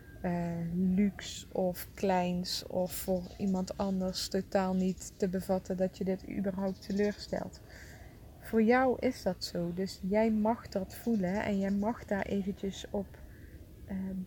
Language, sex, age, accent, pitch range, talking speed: English, female, 20-39, Dutch, 195-235 Hz, 145 wpm